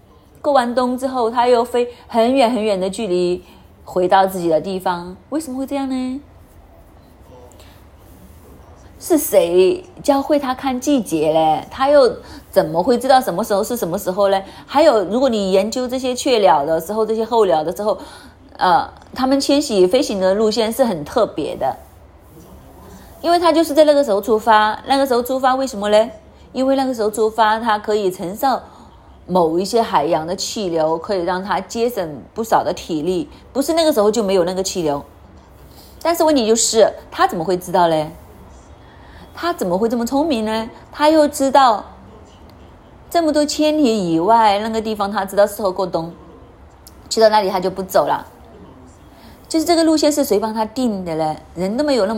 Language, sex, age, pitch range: Chinese, female, 30-49, 185-265 Hz